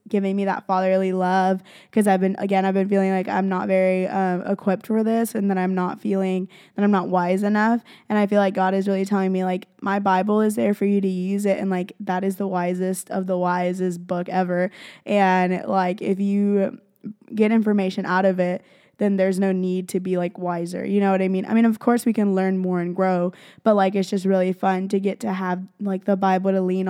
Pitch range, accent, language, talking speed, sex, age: 185-200 Hz, American, English, 240 wpm, female, 10-29